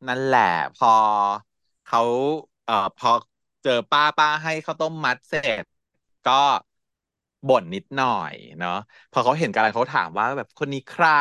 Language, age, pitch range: Thai, 30-49, 120-155 Hz